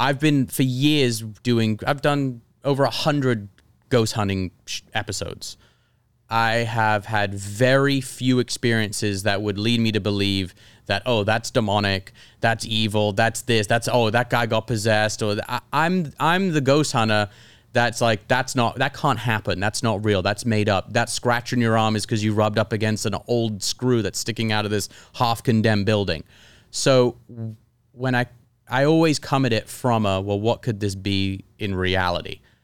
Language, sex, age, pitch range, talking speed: English, male, 30-49, 105-120 Hz, 180 wpm